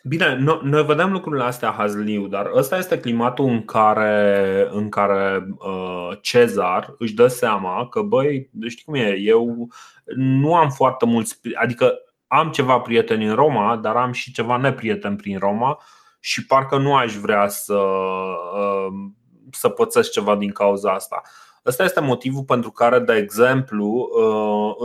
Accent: native